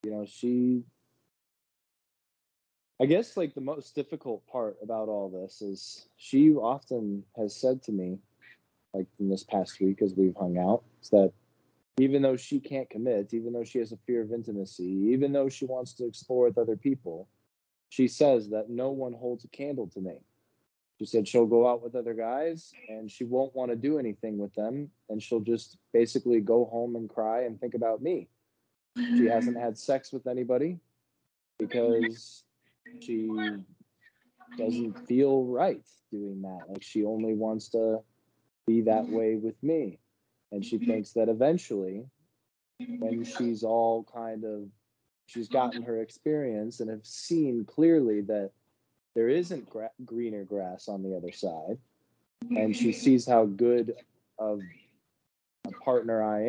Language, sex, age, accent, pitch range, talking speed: English, male, 20-39, American, 105-125 Hz, 160 wpm